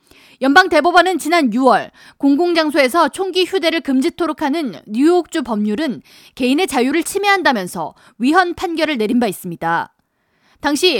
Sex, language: female, Korean